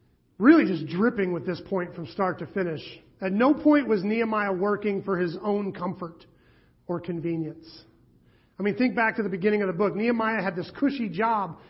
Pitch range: 175-220 Hz